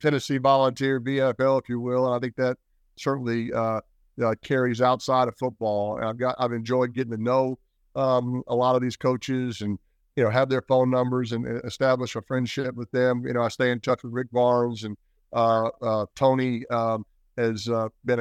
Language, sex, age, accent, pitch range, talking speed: English, male, 50-69, American, 115-125 Hz, 200 wpm